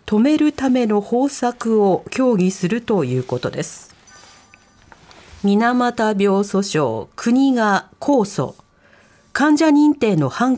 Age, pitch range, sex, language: 40-59, 190-260 Hz, female, Japanese